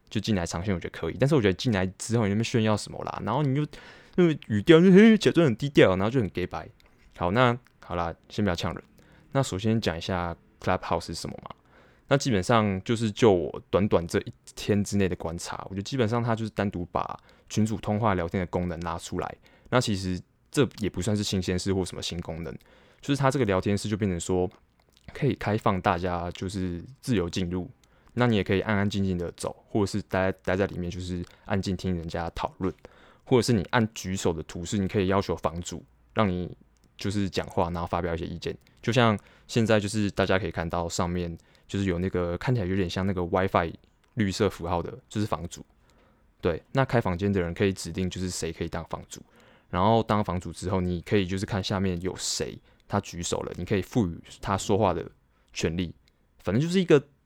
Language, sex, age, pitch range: Chinese, male, 20-39, 90-110 Hz